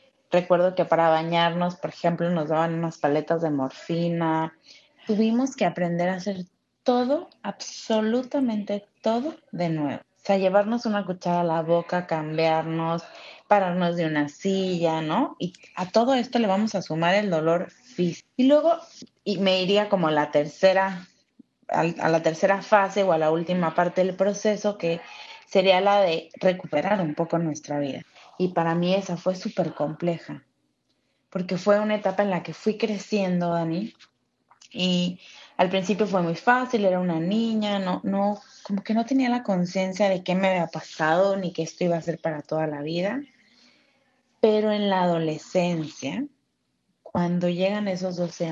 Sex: female